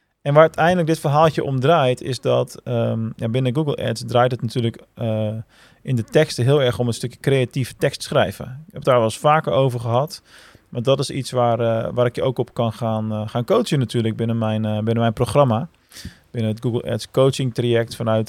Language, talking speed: Dutch, 225 wpm